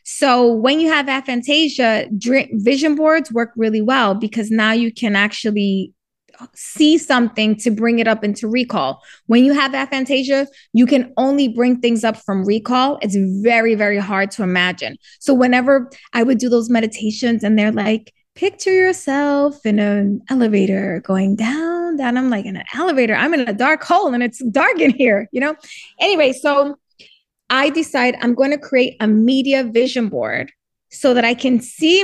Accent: American